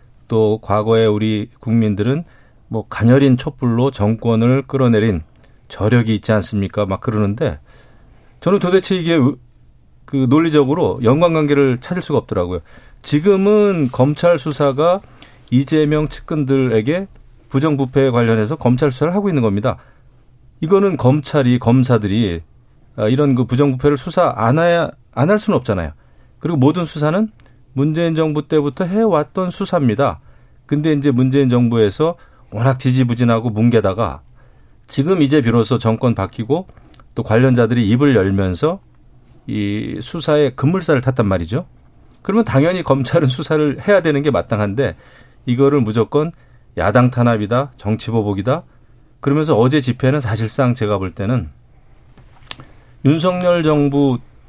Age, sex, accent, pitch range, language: 40-59, male, native, 115-150 Hz, Korean